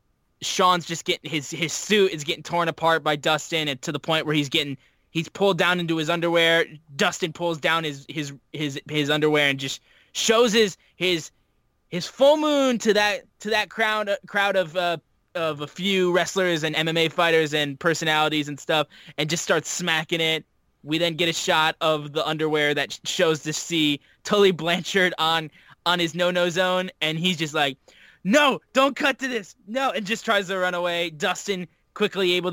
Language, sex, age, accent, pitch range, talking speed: English, male, 10-29, American, 155-195 Hz, 190 wpm